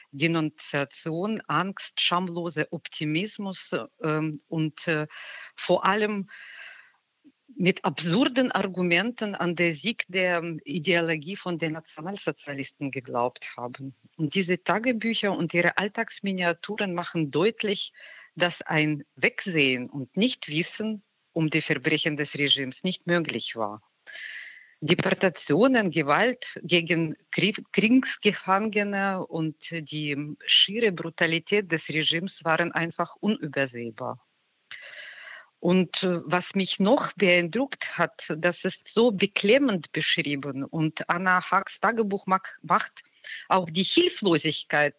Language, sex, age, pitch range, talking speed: German, female, 50-69, 155-200 Hz, 100 wpm